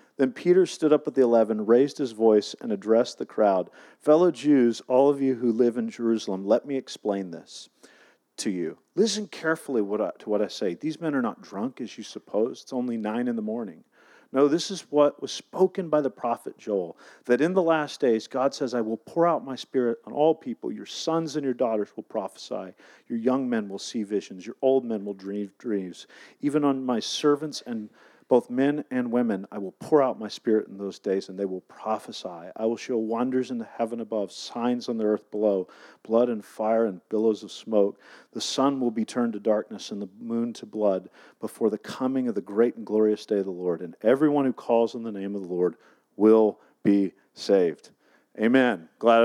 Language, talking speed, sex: English, 215 wpm, male